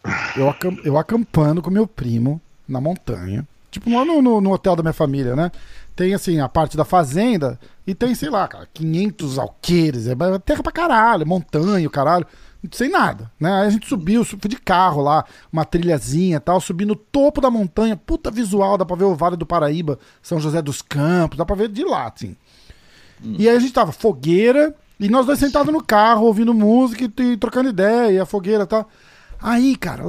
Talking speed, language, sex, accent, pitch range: 195 wpm, Portuguese, male, Brazilian, 150-215 Hz